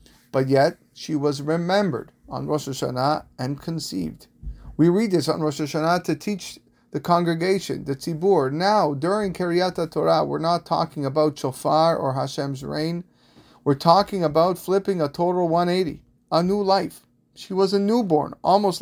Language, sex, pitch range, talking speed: English, male, 135-170 Hz, 155 wpm